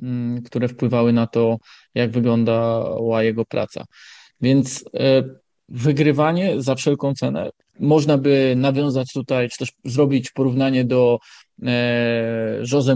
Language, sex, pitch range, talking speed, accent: Polish, male, 120-140 Hz, 105 wpm, native